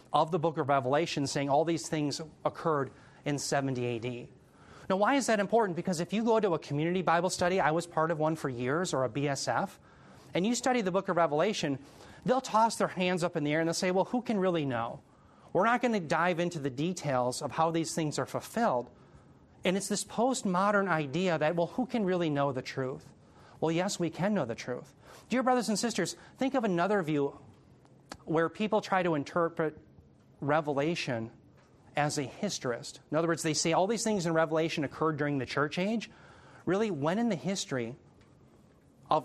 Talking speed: 200 wpm